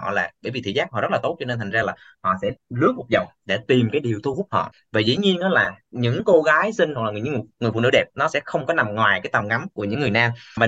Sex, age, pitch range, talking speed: male, 20-39, 110-170 Hz, 325 wpm